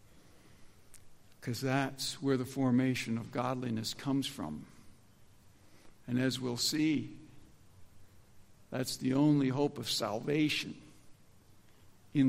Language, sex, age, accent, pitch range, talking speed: English, male, 60-79, American, 110-170 Hz, 100 wpm